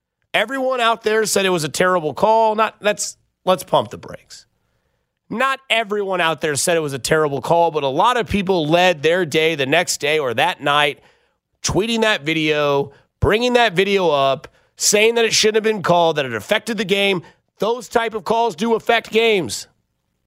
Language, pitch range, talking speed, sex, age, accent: English, 150-220 Hz, 190 wpm, male, 30-49, American